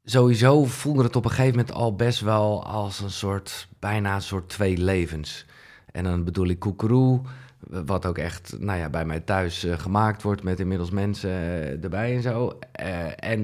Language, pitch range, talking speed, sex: Dutch, 95-120 Hz, 180 wpm, male